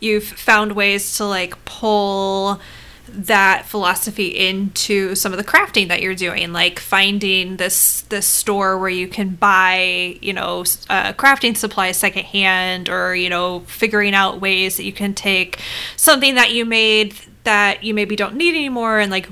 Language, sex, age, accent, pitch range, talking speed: English, female, 20-39, American, 190-220 Hz, 165 wpm